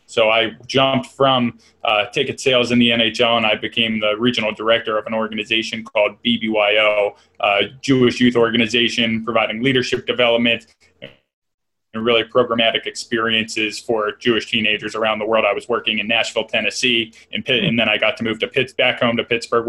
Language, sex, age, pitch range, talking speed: English, male, 20-39, 110-120 Hz, 175 wpm